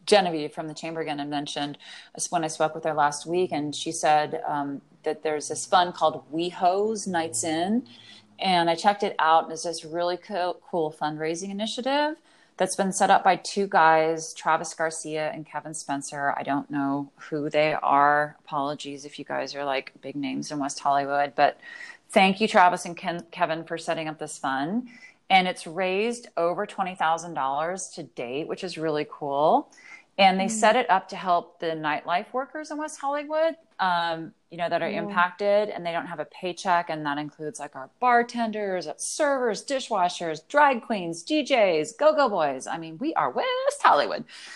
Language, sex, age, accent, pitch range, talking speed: English, female, 30-49, American, 155-200 Hz, 185 wpm